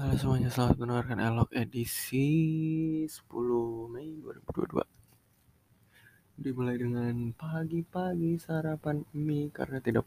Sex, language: male, Indonesian